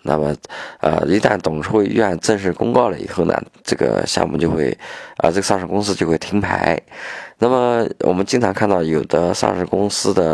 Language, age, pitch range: Chinese, 20-39, 80-100 Hz